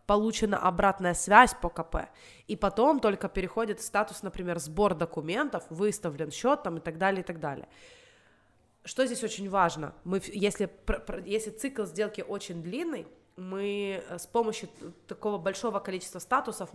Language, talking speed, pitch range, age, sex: Russian, 145 wpm, 175-230 Hz, 20-39, female